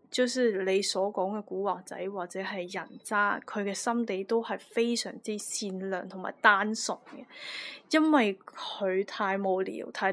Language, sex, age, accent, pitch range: Chinese, female, 20-39, native, 195-240 Hz